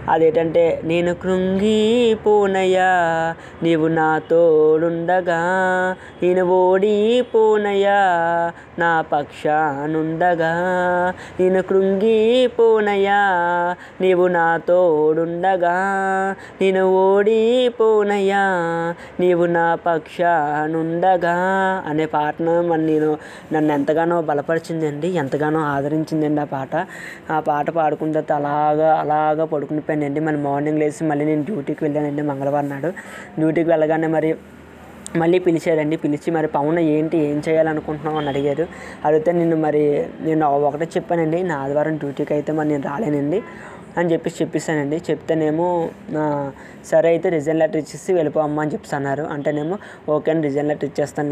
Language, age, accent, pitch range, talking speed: Telugu, 20-39, native, 155-180 Hz, 110 wpm